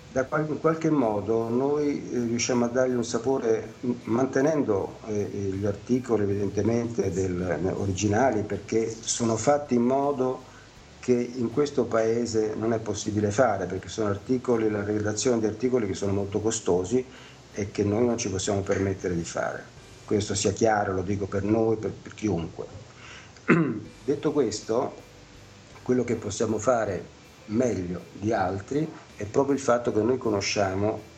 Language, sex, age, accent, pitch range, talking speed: Italian, male, 50-69, native, 100-125 Hz, 140 wpm